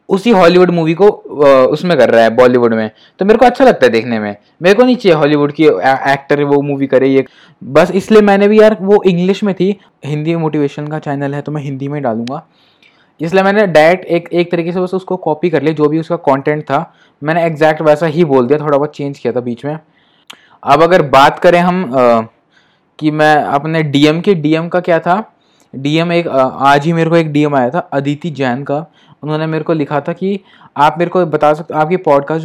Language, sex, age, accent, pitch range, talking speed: Hindi, male, 20-39, native, 145-175 Hz, 220 wpm